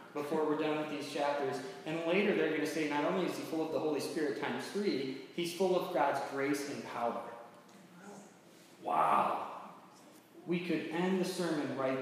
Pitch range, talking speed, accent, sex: 135-170 Hz, 185 wpm, American, male